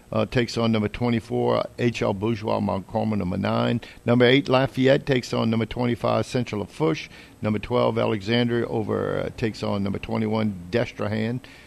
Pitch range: 105-120 Hz